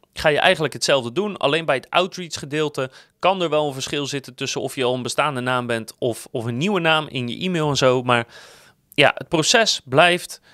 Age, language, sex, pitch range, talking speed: 30-49, Dutch, male, 130-175 Hz, 220 wpm